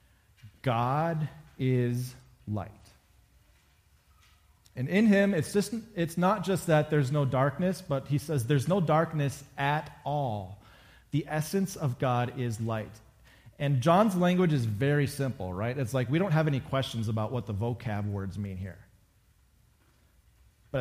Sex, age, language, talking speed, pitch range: male, 30-49, English, 145 wpm, 110-150 Hz